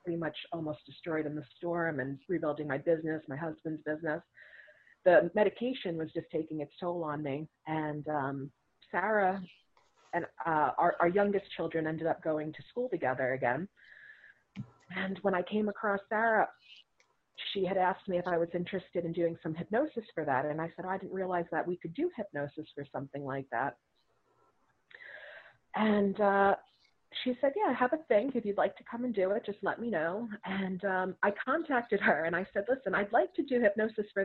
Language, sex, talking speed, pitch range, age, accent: English, female, 195 wpm, 160-210 Hz, 30-49, American